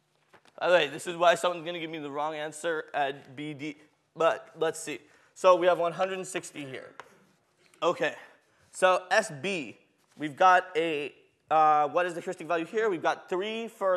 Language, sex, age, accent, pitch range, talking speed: English, male, 20-39, American, 160-195 Hz, 170 wpm